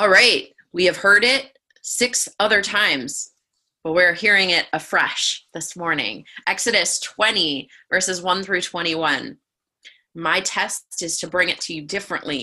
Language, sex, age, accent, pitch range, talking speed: English, female, 20-39, American, 160-205 Hz, 150 wpm